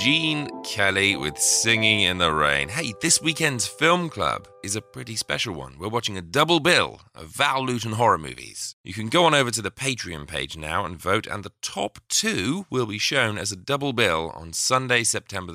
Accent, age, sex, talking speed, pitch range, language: British, 30-49, male, 205 wpm, 85-125 Hz, English